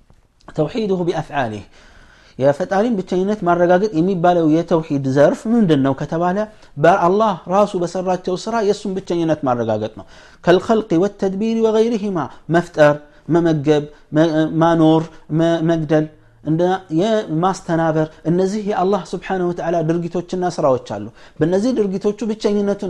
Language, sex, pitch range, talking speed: Amharic, male, 140-175 Hz, 105 wpm